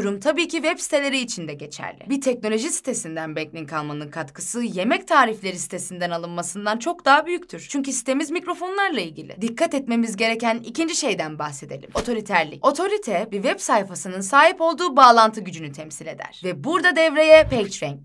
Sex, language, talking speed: female, Turkish, 150 wpm